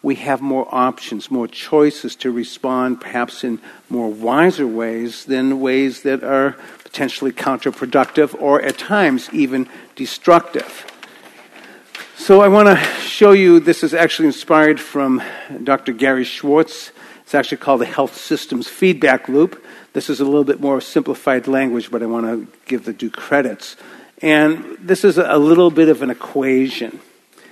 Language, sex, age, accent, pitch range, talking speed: English, male, 60-79, American, 125-155 Hz, 155 wpm